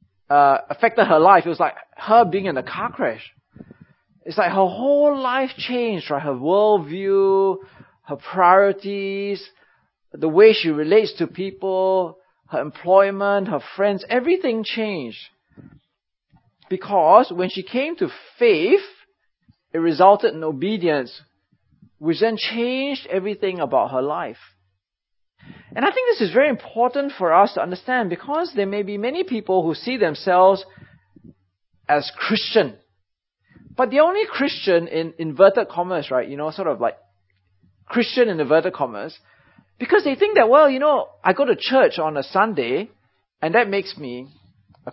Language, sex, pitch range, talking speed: English, male, 155-235 Hz, 150 wpm